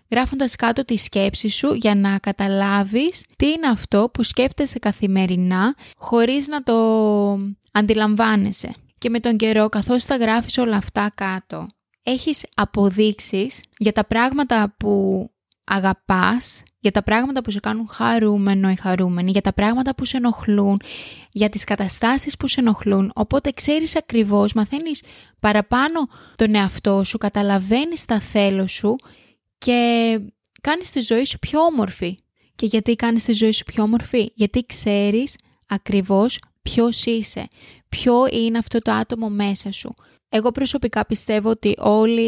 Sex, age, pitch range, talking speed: female, 20-39, 205-245 Hz, 140 wpm